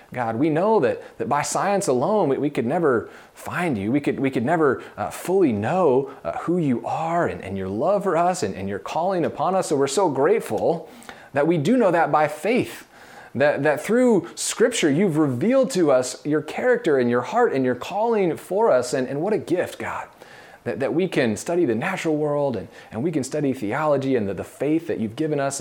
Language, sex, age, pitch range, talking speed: English, male, 30-49, 105-150 Hz, 225 wpm